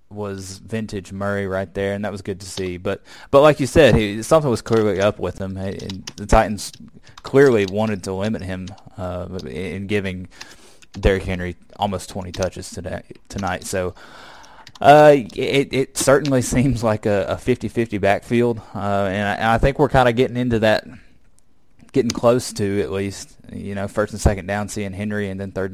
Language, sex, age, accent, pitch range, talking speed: English, male, 20-39, American, 95-115 Hz, 190 wpm